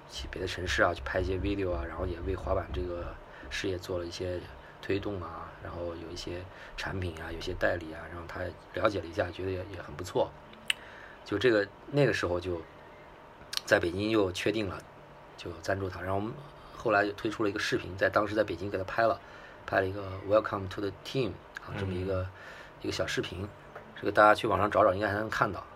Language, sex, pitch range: Chinese, male, 85-100 Hz